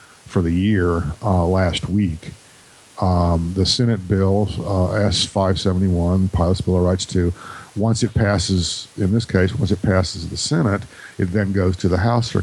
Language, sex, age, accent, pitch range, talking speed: English, male, 50-69, American, 85-100 Hz, 170 wpm